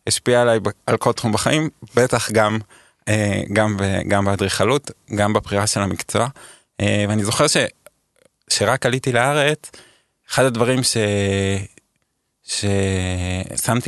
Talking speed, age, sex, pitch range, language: 95 wpm, 20-39, male, 100-120 Hz, Hebrew